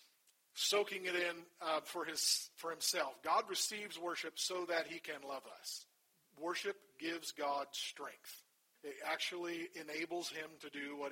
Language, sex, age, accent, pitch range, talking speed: English, male, 40-59, American, 150-180 Hz, 145 wpm